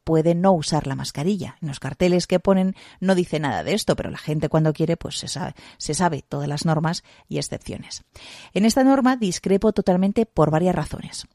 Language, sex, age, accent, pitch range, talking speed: Spanish, female, 30-49, Spanish, 150-195 Hz, 195 wpm